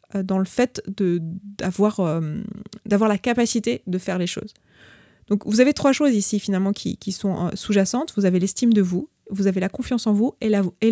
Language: French